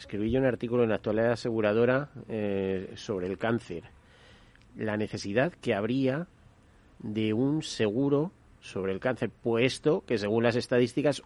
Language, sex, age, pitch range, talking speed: Spanish, male, 40-59, 110-135 Hz, 145 wpm